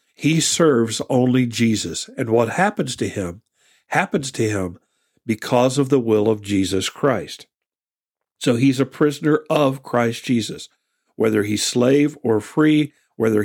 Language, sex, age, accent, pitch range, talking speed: English, male, 50-69, American, 115-140 Hz, 145 wpm